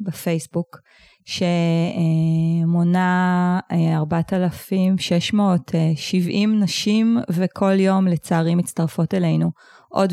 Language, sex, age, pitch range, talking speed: Hebrew, female, 20-39, 175-195 Hz, 60 wpm